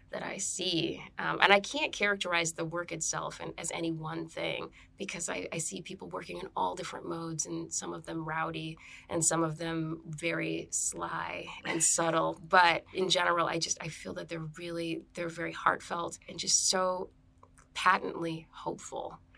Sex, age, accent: female, 20-39, American